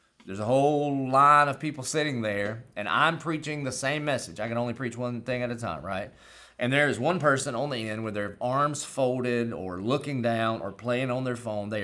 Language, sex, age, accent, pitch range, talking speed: English, male, 30-49, American, 100-135 Hz, 230 wpm